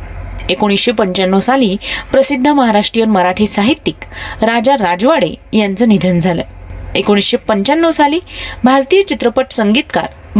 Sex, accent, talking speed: female, native, 100 wpm